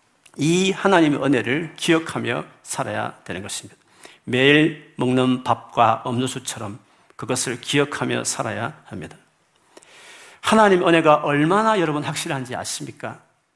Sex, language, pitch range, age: male, Korean, 120-170 Hz, 50-69